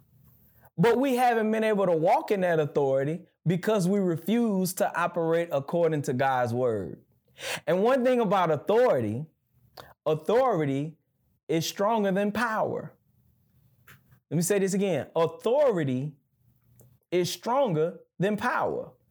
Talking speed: 120 wpm